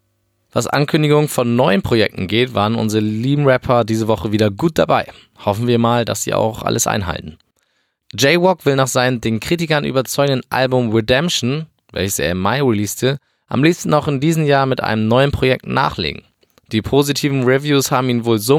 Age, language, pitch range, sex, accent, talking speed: 20-39, German, 110-135 Hz, male, German, 180 wpm